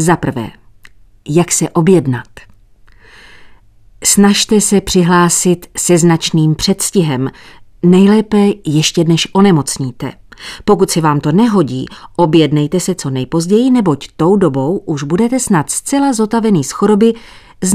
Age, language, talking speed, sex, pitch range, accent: 40-59, Czech, 120 wpm, female, 135-190 Hz, native